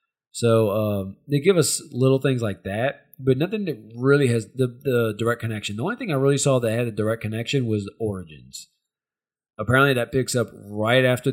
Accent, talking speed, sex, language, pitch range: American, 195 wpm, male, English, 100-125 Hz